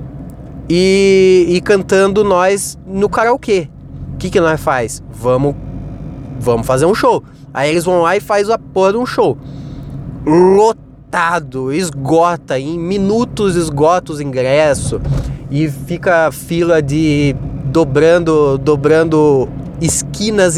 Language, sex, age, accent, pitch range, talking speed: Portuguese, male, 20-39, Brazilian, 145-225 Hz, 120 wpm